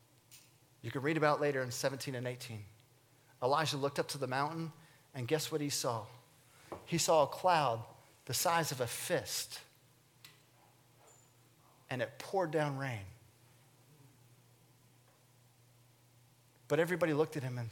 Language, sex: English, male